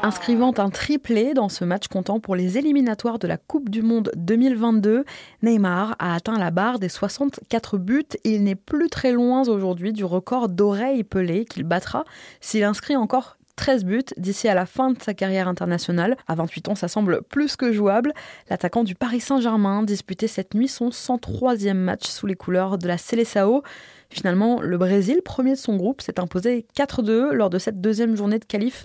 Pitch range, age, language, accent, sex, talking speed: 195-250 Hz, 20-39, French, French, female, 190 wpm